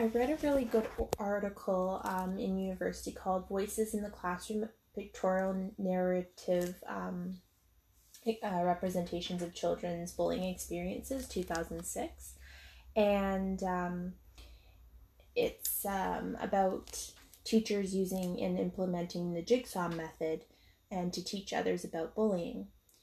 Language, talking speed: English, 110 wpm